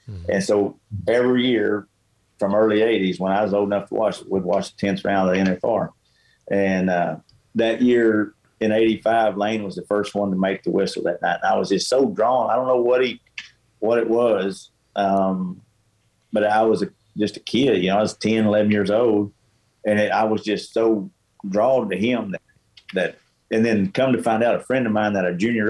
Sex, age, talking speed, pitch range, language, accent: male, 40-59, 215 wpm, 95-110 Hz, English, American